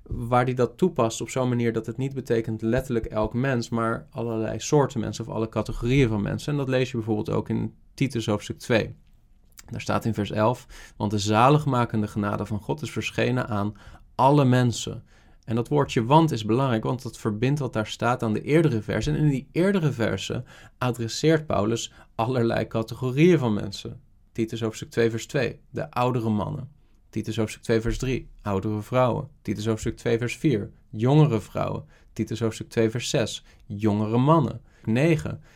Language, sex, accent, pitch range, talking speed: Dutch, male, Dutch, 105-125 Hz, 180 wpm